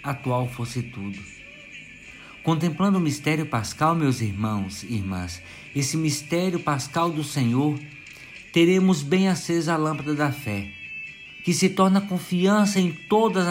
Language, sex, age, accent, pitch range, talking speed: Portuguese, male, 50-69, Brazilian, 105-160 Hz, 130 wpm